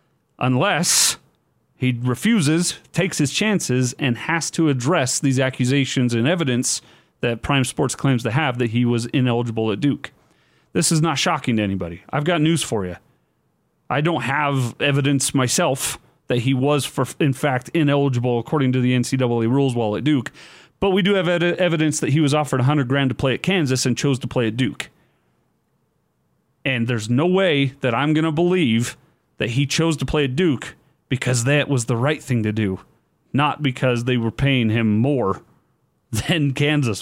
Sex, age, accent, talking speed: male, 40-59, American, 180 wpm